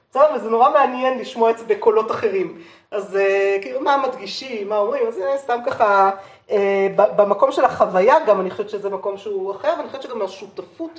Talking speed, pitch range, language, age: 180 wpm, 200-295 Hz, Hebrew, 30-49